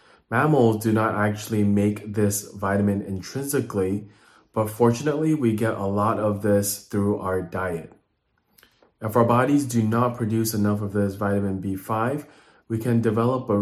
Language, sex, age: English, male, 20-39